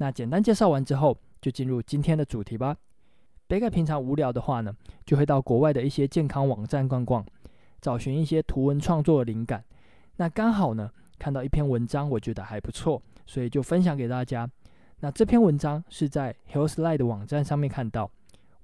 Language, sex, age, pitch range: Chinese, male, 20-39, 120-155 Hz